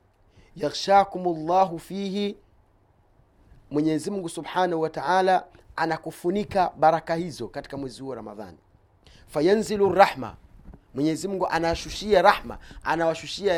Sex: male